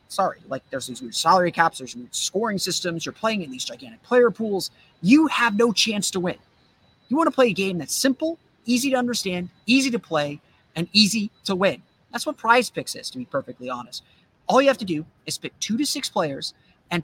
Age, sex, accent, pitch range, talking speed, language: 30-49, male, American, 155-210 Hz, 220 wpm, English